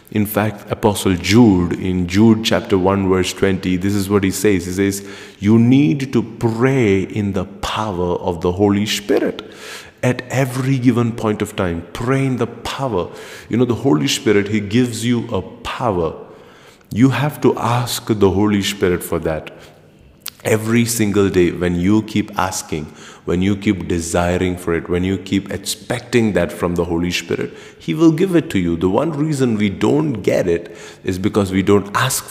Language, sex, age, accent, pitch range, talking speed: English, male, 30-49, Indian, 95-120 Hz, 180 wpm